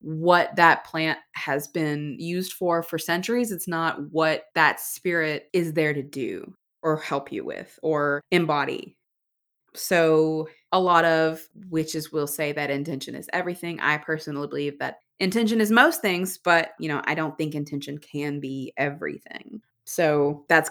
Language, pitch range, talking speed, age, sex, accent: English, 150-180 Hz, 160 wpm, 20-39, female, American